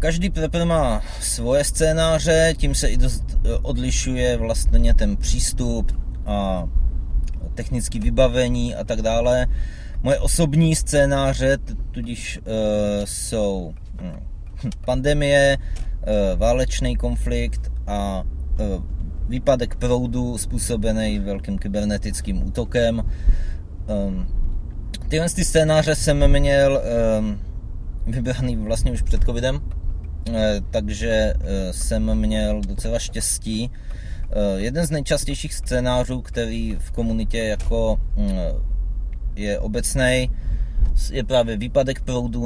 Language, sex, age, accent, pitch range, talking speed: Czech, male, 30-49, native, 95-125 Hz, 90 wpm